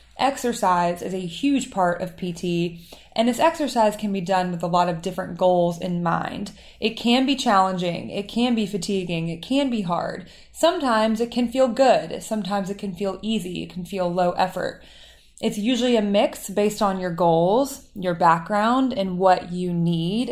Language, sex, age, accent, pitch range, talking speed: English, female, 20-39, American, 180-230 Hz, 185 wpm